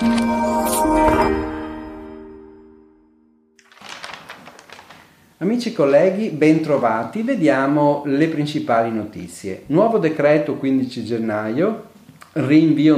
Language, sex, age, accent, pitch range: Italian, male, 40-59, native, 115-170 Hz